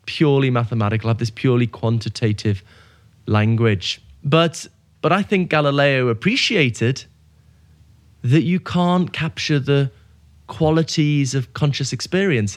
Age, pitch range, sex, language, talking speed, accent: 20-39, 115-140 Hz, male, English, 105 wpm, British